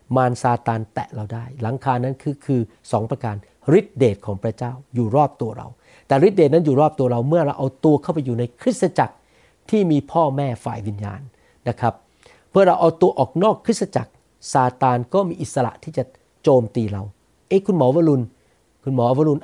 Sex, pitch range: male, 125-180 Hz